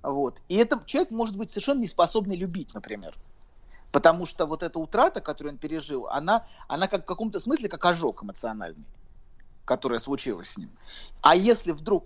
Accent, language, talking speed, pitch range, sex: native, Russian, 170 wpm, 145-205 Hz, male